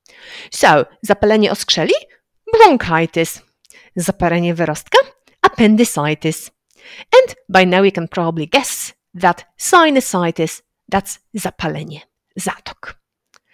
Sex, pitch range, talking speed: female, 175-275 Hz, 85 wpm